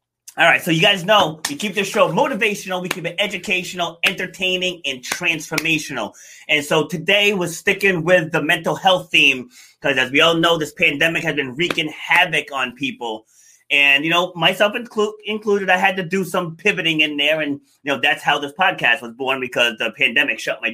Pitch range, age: 145-185 Hz, 30-49